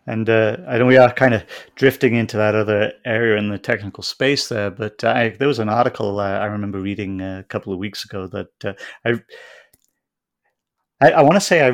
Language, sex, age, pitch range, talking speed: English, male, 40-59, 100-115 Hz, 215 wpm